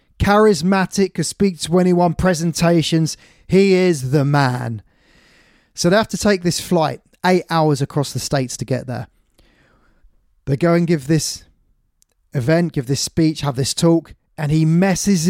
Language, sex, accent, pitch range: English, male, British, 135-185 Hz